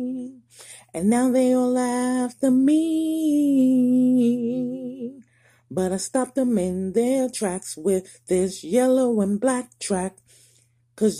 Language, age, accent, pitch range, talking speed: English, 30-49, American, 215-255 Hz, 115 wpm